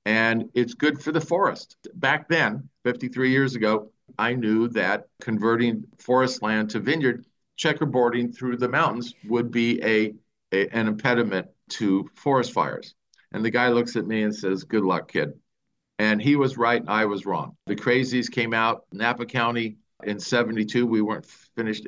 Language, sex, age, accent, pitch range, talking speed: English, male, 50-69, American, 105-125 Hz, 170 wpm